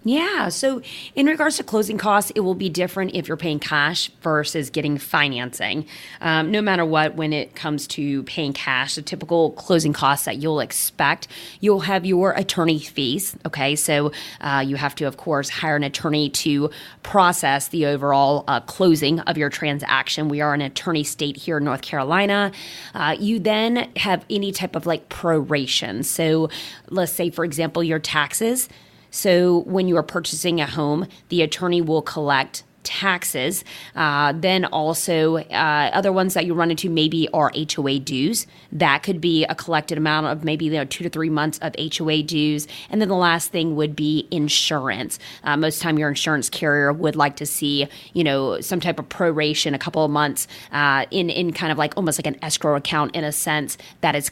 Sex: female